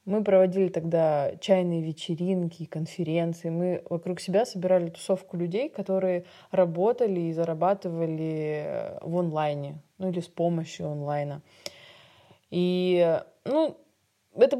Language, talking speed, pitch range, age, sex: Russian, 105 wpm, 170-200 Hz, 20-39, female